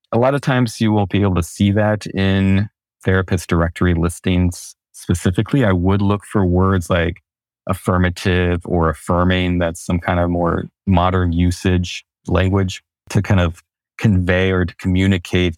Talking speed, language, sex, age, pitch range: 155 wpm, English, male, 30-49, 85-100 Hz